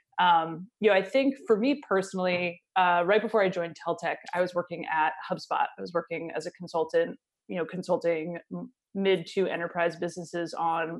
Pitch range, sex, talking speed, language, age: 170-200 Hz, female, 180 wpm, English, 20-39